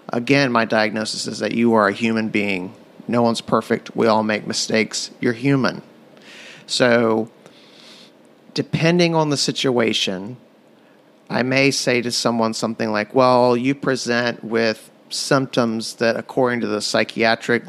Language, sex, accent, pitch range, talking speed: English, male, American, 110-125 Hz, 140 wpm